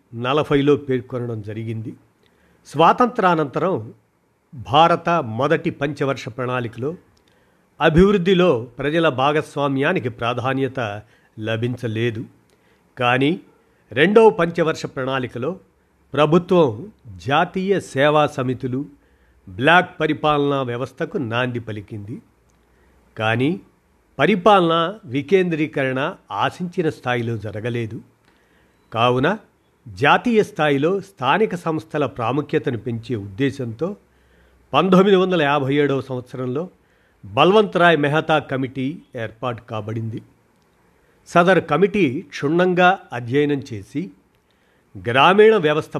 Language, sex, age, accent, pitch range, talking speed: Telugu, male, 50-69, native, 120-165 Hz, 75 wpm